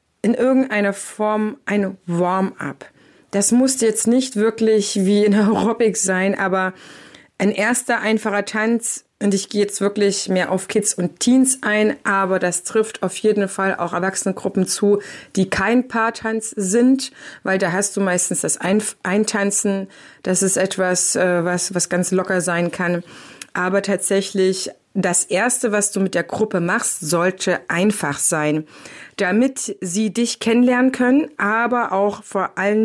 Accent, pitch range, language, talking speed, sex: German, 185-220 Hz, German, 150 wpm, female